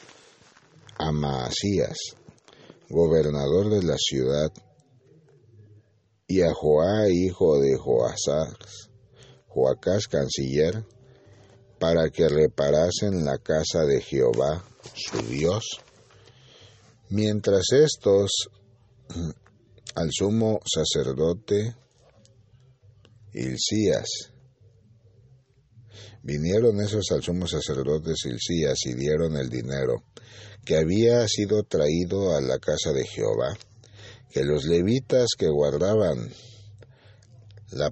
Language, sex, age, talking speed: Spanish, male, 60-79, 85 wpm